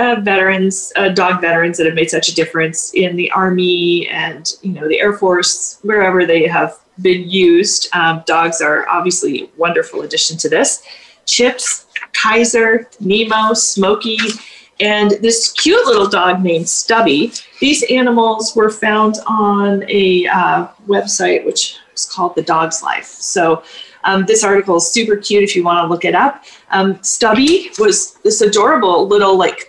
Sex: female